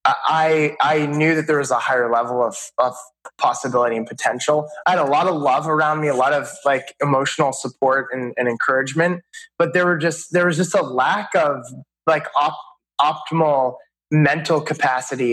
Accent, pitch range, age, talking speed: American, 135-165 Hz, 20-39, 180 wpm